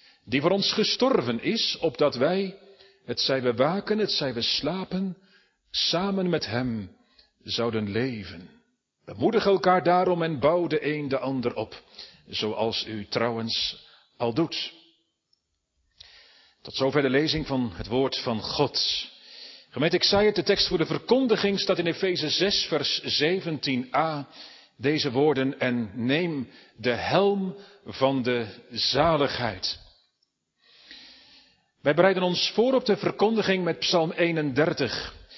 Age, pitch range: 40-59, 130-185 Hz